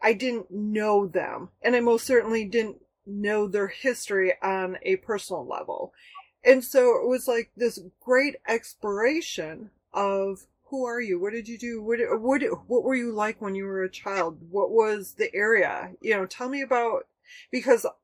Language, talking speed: English, 175 wpm